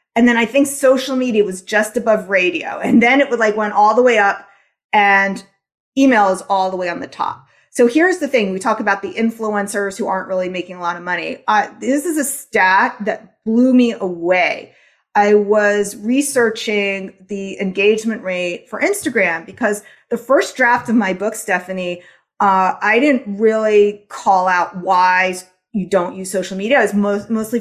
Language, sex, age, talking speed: English, female, 30-49, 185 wpm